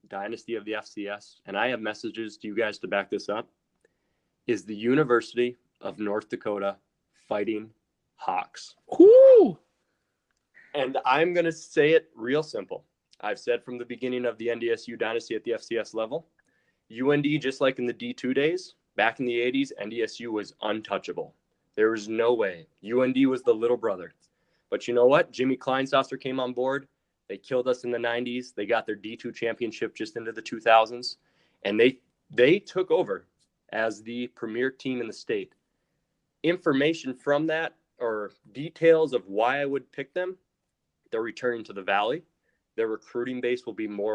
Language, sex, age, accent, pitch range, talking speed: English, male, 20-39, American, 115-160 Hz, 170 wpm